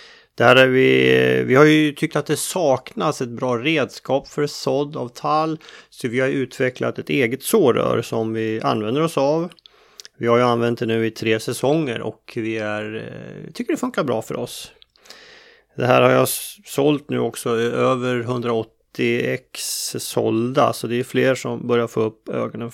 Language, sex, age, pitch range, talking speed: Swedish, male, 30-49, 115-155 Hz, 170 wpm